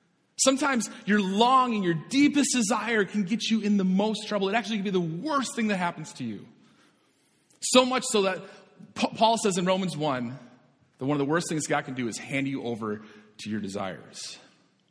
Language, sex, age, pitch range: English, male, 30-49, 145-205 Hz